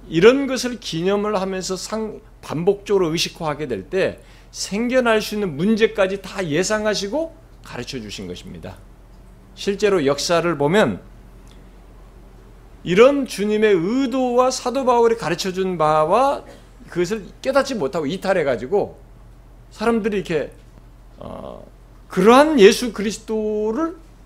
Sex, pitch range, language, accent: male, 140-225 Hz, Korean, native